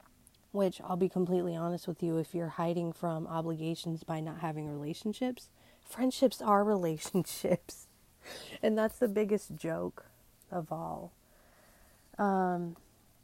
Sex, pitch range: female, 155-180 Hz